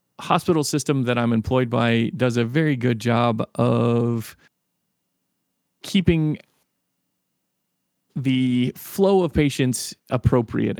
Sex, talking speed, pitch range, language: male, 100 wpm, 115-130 Hz, English